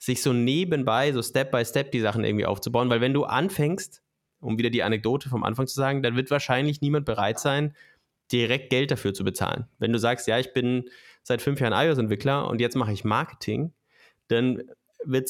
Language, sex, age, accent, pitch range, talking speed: German, male, 20-39, German, 115-135 Hz, 195 wpm